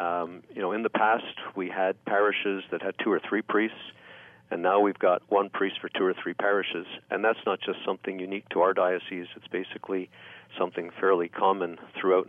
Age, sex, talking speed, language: 50-69, male, 200 wpm, English